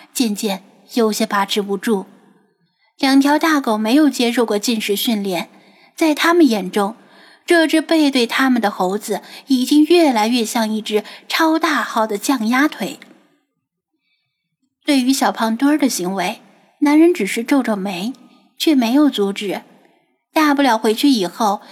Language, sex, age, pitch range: Chinese, female, 10-29, 210-280 Hz